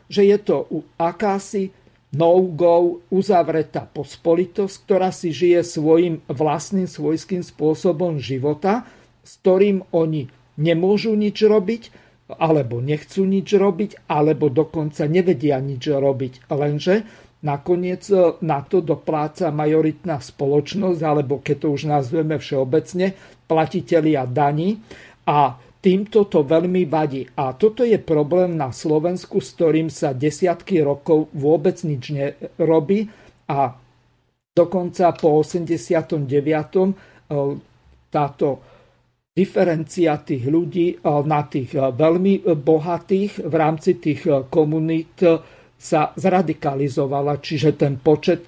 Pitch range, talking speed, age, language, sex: 150-180 Hz, 110 wpm, 50-69, Slovak, male